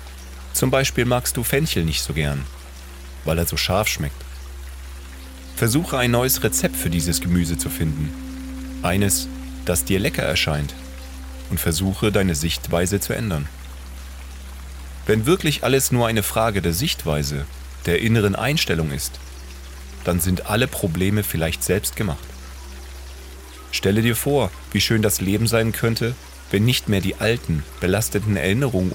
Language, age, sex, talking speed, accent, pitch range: German, 30-49, male, 140 wpm, German, 65-100 Hz